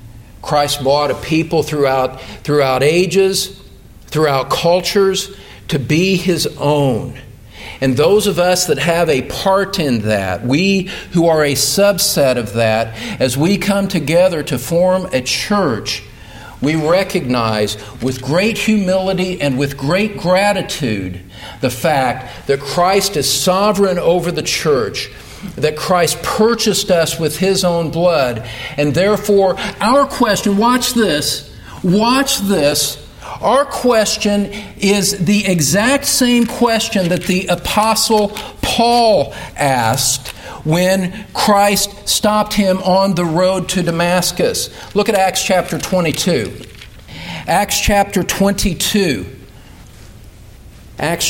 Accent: American